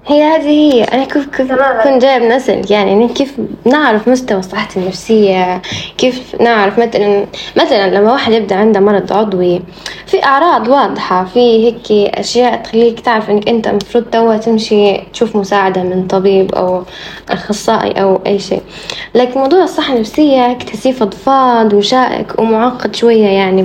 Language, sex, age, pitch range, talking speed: Arabic, female, 10-29, 195-235 Hz, 140 wpm